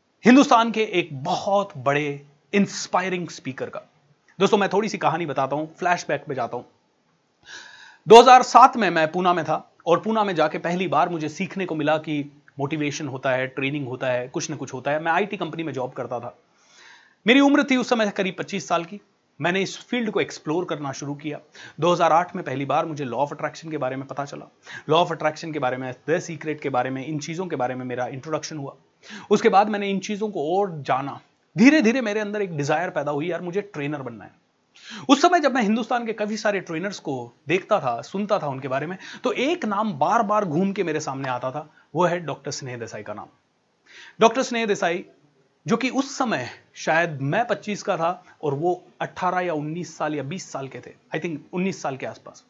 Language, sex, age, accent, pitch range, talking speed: Hindi, male, 30-49, native, 145-200 Hz, 215 wpm